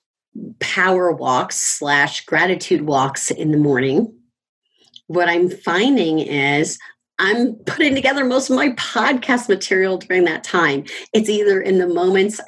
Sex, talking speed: female, 135 wpm